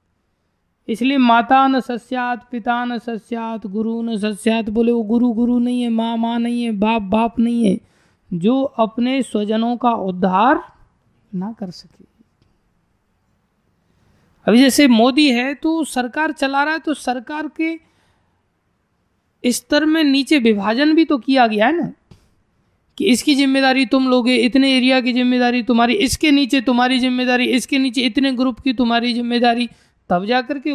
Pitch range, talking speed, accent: 230-285 Hz, 150 wpm, native